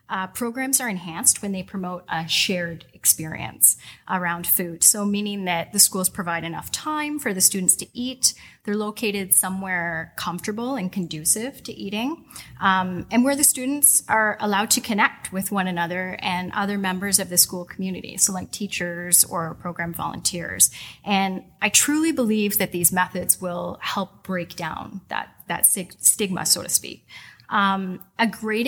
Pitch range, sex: 180-215 Hz, female